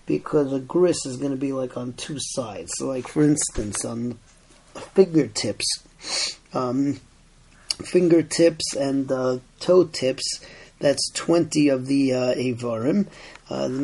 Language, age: English, 40-59